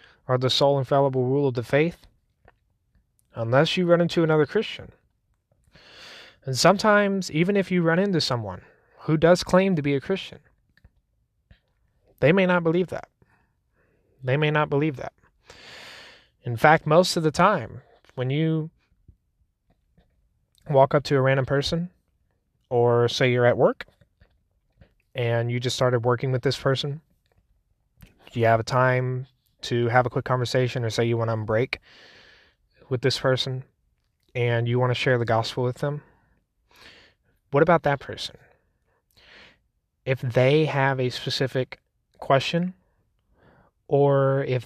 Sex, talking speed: male, 140 wpm